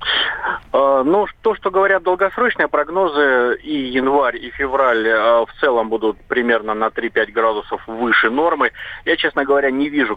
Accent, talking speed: native, 140 wpm